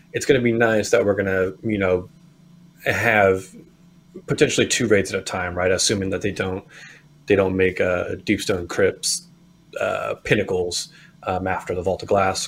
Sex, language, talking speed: male, English, 185 wpm